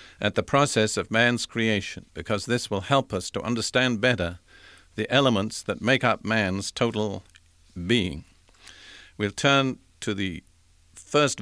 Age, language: 50-69, English